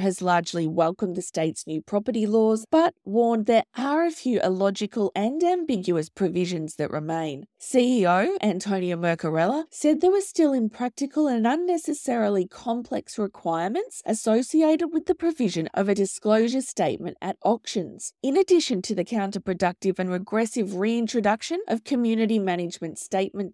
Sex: female